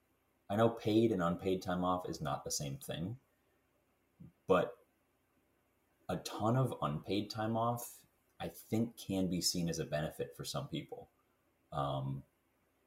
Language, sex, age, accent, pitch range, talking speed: English, male, 30-49, American, 70-95 Hz, 145 wpm